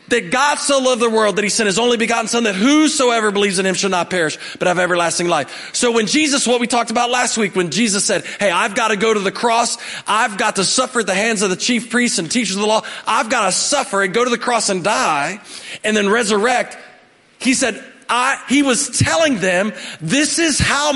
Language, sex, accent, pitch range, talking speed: English, male, American, 195-260 Hz, 245 wpm